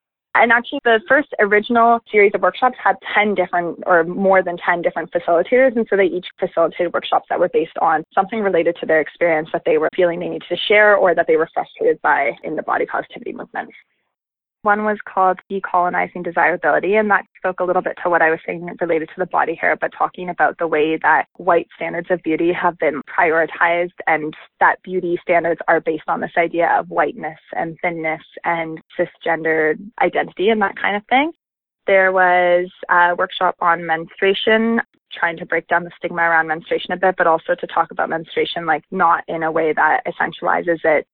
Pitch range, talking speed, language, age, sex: 170-200 Hz, 200 wpm, English, 20-39, female